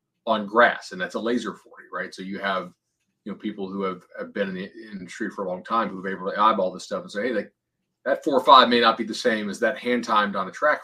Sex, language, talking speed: male, English, 290 wpm